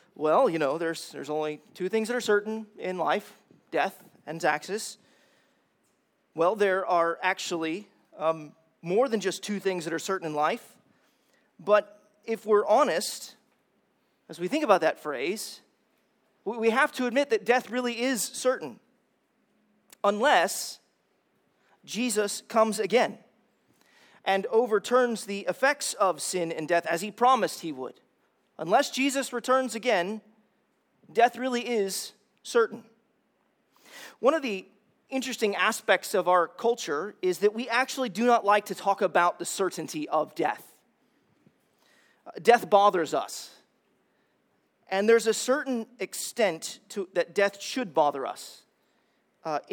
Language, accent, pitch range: English, American, 190-245 Hz